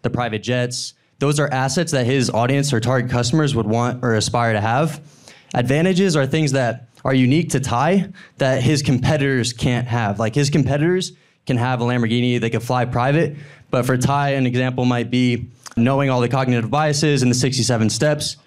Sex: male